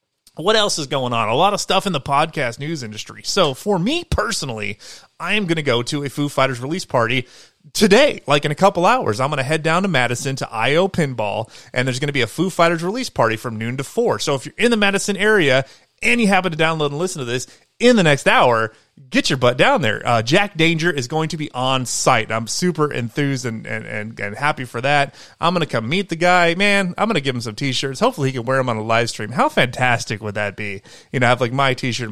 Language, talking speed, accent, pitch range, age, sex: English, 260 wpm, American, 120-175 Hz, 30-49, male